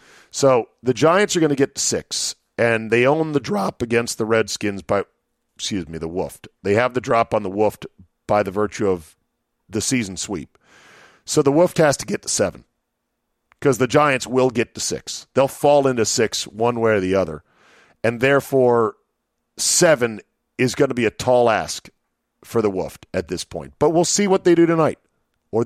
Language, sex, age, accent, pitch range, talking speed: English, male, 40-59, American, 115-150 Hz, 195 wpm